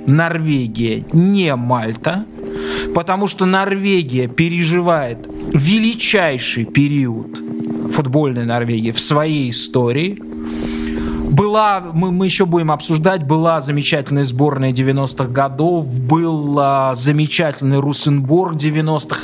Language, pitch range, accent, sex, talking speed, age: Russian, 115-160 Hz, native, male, 90 wpm, 20-39